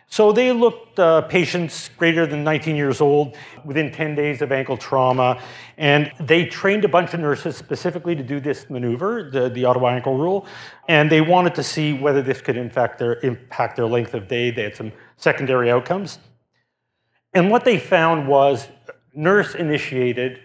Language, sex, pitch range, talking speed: English, male, 125-160 Hz, 175 wpm